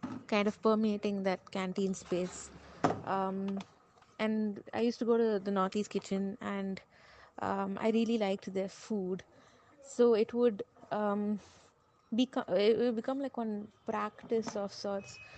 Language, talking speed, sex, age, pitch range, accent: English, 130 wpm, female, 20-39, 200-240 Hz, Indian